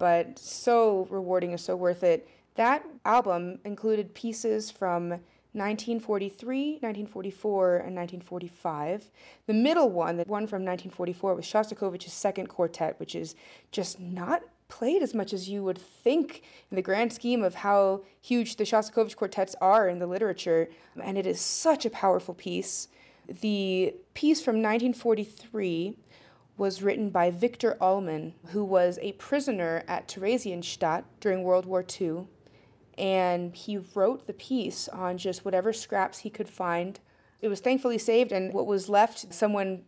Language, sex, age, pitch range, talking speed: English, female, 30-49, 180-220 Hz, 150 wpm